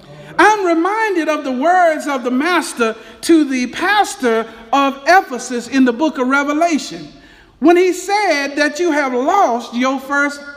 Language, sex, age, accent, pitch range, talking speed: English, male, 50-69, American, 245-345 Hz, 155 wpm